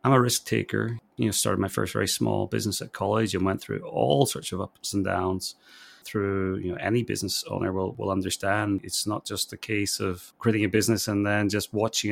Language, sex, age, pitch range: English, male, 30-49, 100-115 Hz